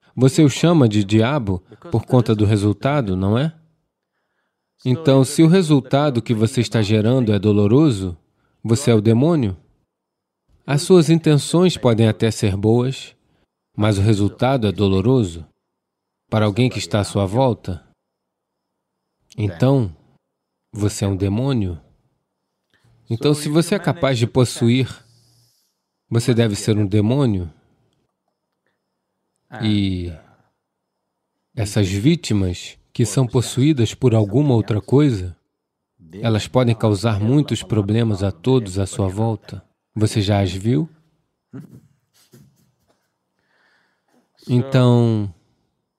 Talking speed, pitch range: 110 wpm, 105-135 Hz